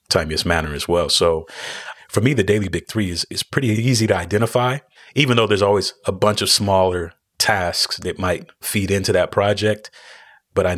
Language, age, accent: English, 30-49, American